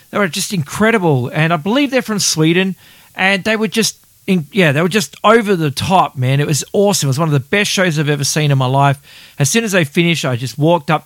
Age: 40-59